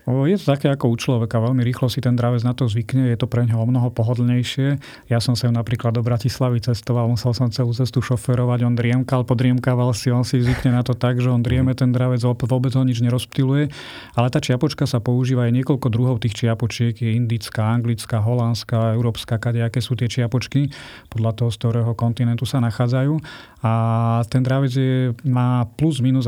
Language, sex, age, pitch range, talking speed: Slovak, male, 30-49, 115-130 Hz, 195 wpm